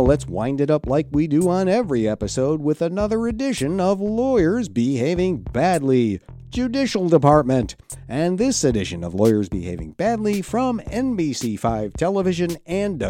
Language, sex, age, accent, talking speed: English, male, 50-69, American, 135 wpm